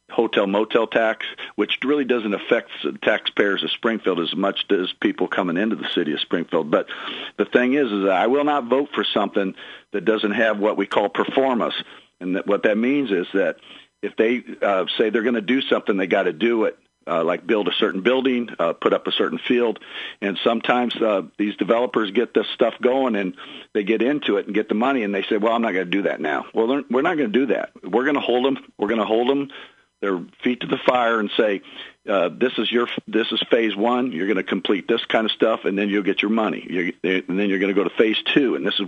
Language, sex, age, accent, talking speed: English, male, 50-69, American, 245 wpm